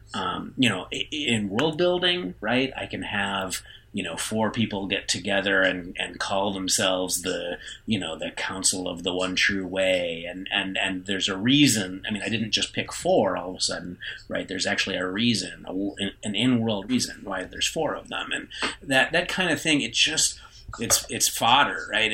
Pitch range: 95-125 Hz